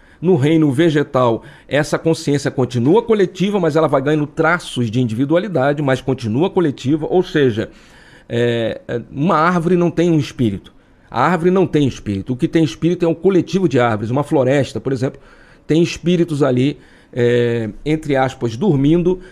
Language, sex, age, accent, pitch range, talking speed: Portuguese, male, 40-59, Brazilian, 130-170 Hz, 150 wpm